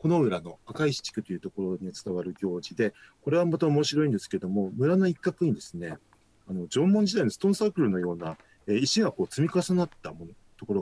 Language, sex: Japanese, male